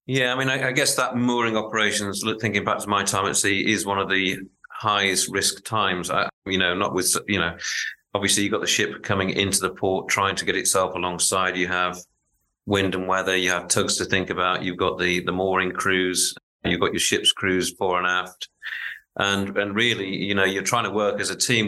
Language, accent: English, British